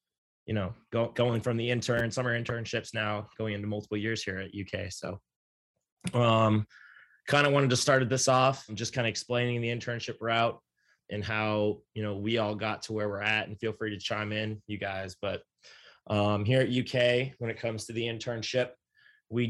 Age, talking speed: 20-39, 200 wpm